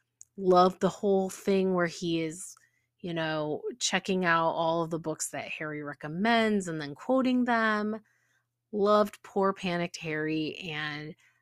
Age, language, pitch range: 30-49, English, 150-205 Hz